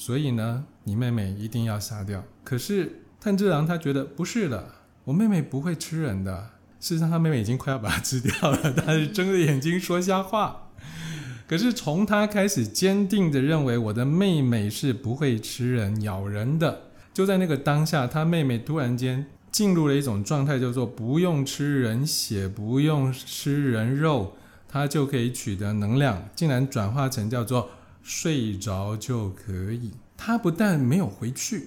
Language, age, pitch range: Chinese, 20-39, 115-155 Hz